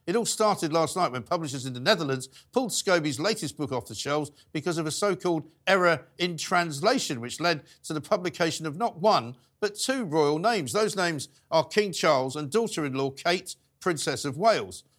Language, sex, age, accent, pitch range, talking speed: English, male, 50-69, British, 135-185 Hz, 200 wpm